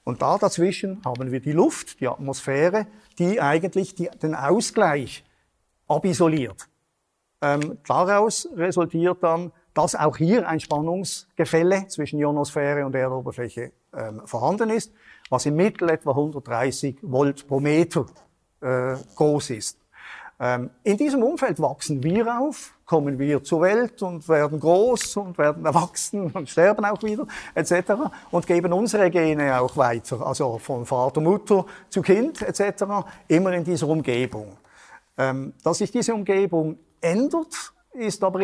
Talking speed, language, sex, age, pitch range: 135 wpm, Dutch, male, 50-69, 145-195 Hz